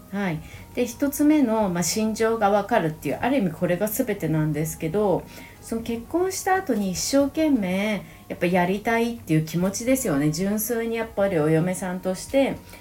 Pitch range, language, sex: 160-235 Hz, Japanese, female